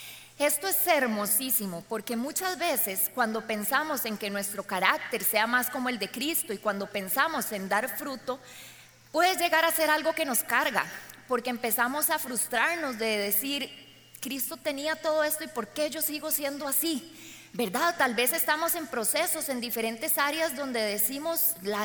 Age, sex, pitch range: 20-39, female, 215-300 Hz